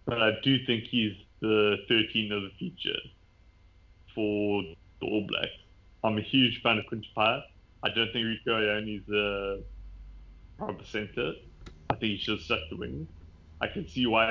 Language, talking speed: English, 170 wpm